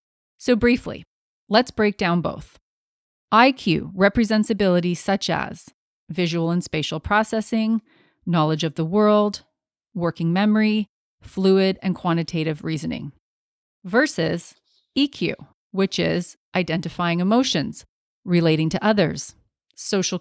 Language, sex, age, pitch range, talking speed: English, female, 30-49, 175-220 Hz, 105 wpm